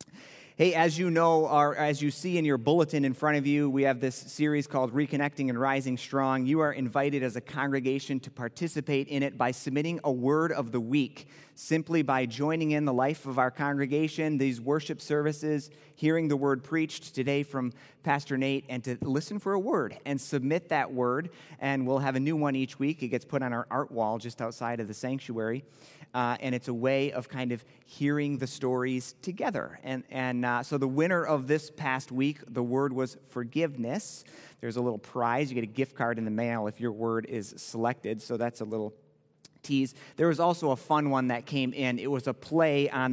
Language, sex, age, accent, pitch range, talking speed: English, male, 30-49, American, 125-150 Hz, 210 wpm